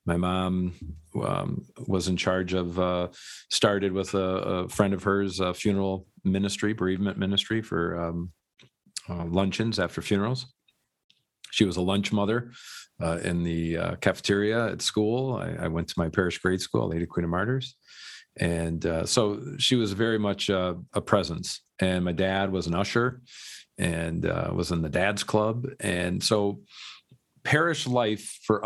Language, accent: English, American